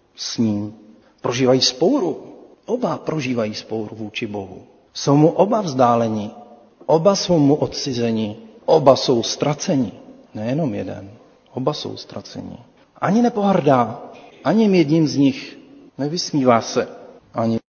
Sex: male